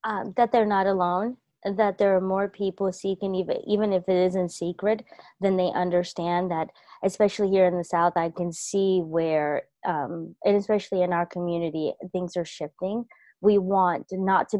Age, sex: 20-39, female